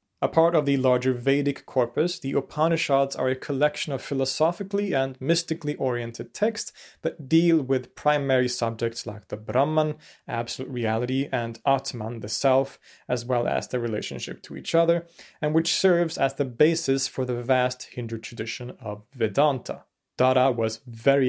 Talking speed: 160 wpm